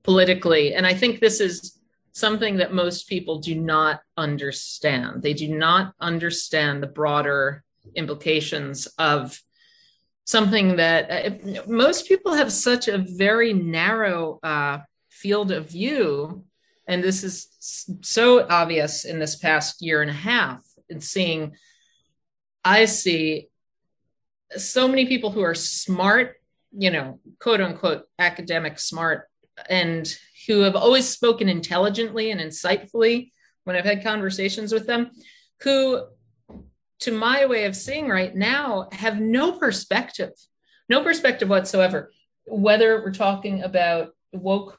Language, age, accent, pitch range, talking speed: English, 40-59, American, 160-220 Hz, 130 wpm